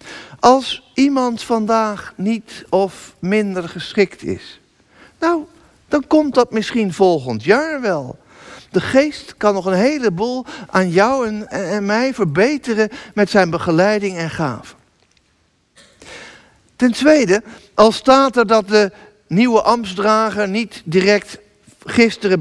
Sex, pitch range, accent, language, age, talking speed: male, 170-230 Hz, Dutch, Dutch, 50-69, 125 wpm